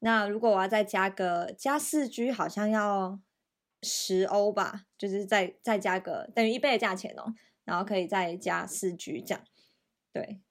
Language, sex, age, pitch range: Chinese, female, 20-39, 190-220 Hz